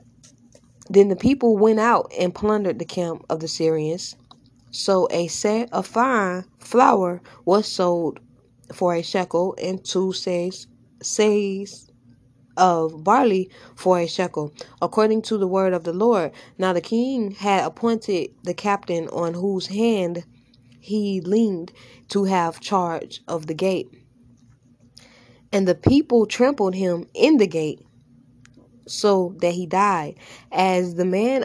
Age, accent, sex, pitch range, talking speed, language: 10-29, American, female, 160-205 Hz, 135 wpm, English